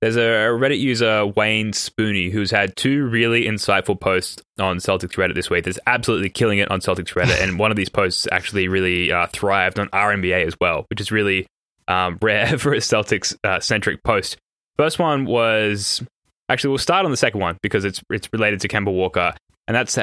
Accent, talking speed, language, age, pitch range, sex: Australian, 200 wpm, English, 10-29, 95-110 Hz, male